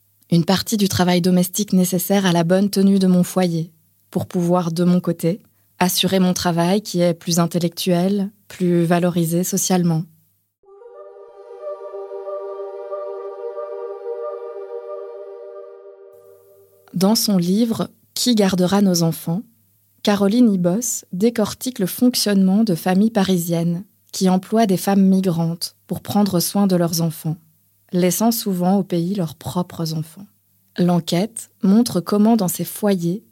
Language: French